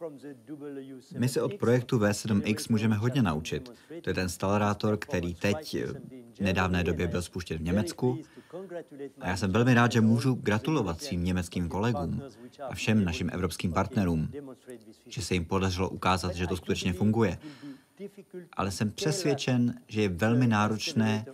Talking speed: 150 wpm